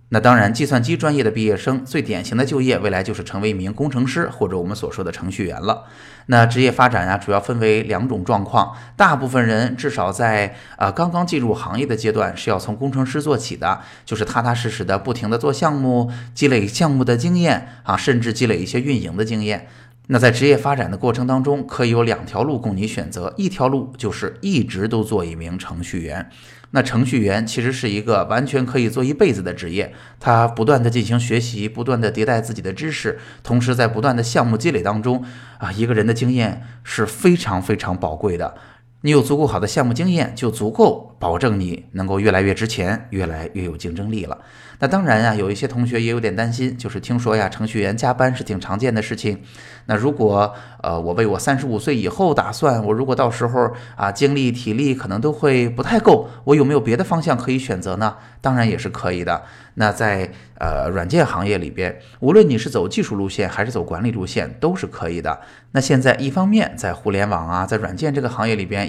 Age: 20-39